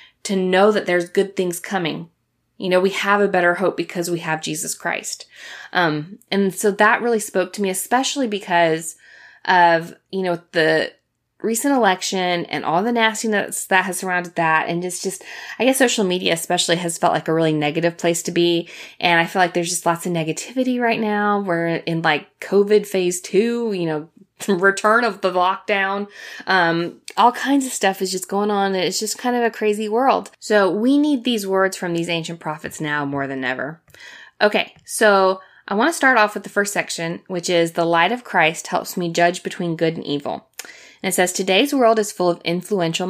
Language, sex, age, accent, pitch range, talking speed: English, female, 20-39, American, 170-210 Hz, 200 wpm